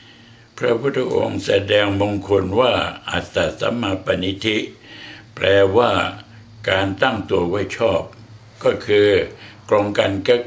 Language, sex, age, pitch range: Thai, male, 60-79, 95-115 Hz